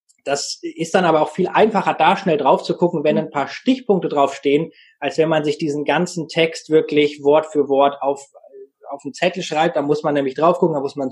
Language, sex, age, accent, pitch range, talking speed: German, male, 20-39, German, 145-180 Hz, 225 wpm